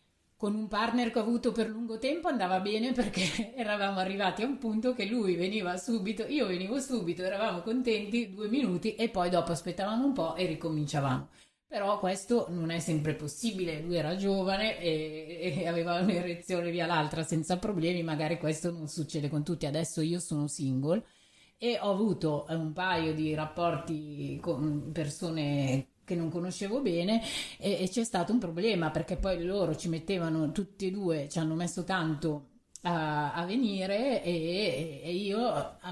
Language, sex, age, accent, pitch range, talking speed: Italian, female, 30-49, native, 160-205 Hz, 165 wpm